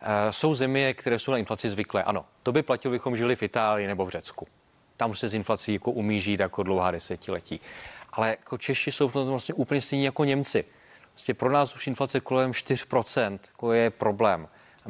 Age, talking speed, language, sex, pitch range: 30-49, 200 wpm, Czech, male, 110-125 Hz